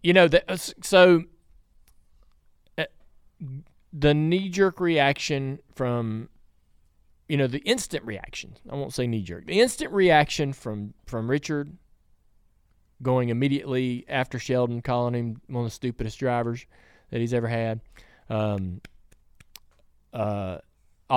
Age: 20-39